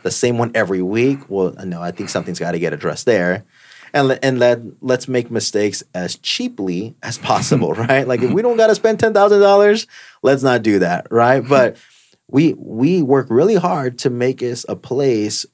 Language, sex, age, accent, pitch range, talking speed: English, male, 20-39, American, 100-130 Hz, 195 wpm